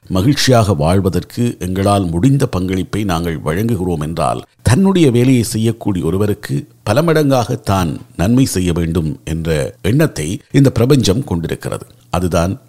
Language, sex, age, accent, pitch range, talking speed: Tamil, male, 50-69, native, 85-125 Hz, 115 wpm